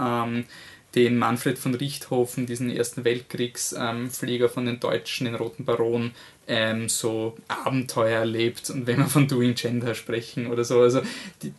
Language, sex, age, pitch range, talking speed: German, male, 20-39, 120-135 Hz, 150 wpm